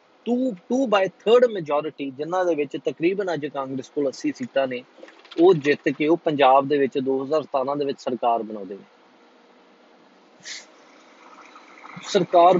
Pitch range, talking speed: 135-185 Hz, 110 wpm